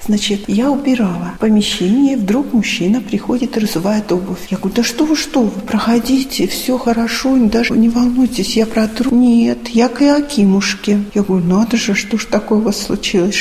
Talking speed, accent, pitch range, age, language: 180 wpm, native, 200-235 Hz, 40-59, Russian